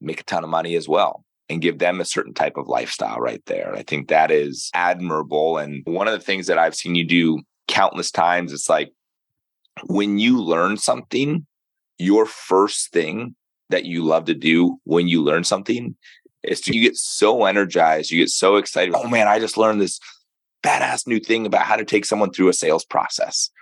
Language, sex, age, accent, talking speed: English, male, 30-49, American, 200 wpm